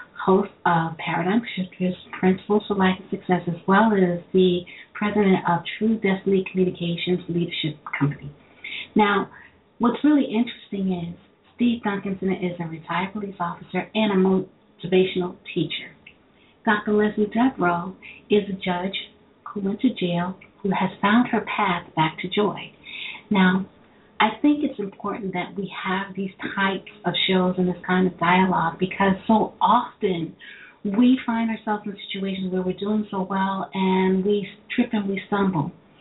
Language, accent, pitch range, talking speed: English, American, 180-210 Hz, 150 wpm